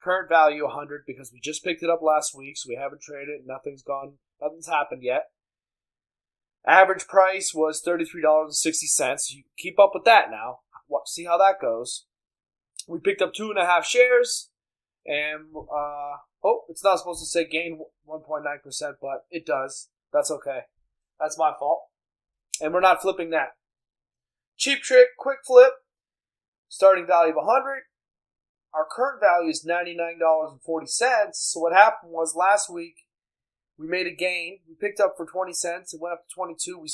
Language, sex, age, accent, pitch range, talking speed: English, male, 20-39, American, 155-185 Hz, 170 wpm